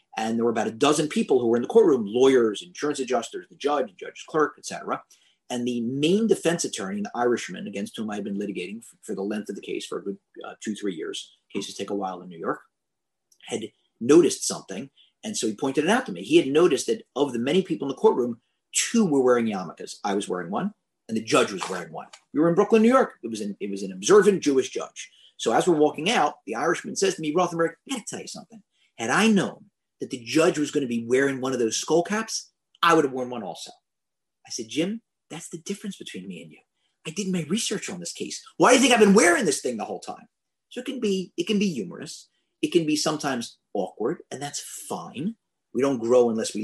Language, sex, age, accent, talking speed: English, male, 40-59, American, 245 wpm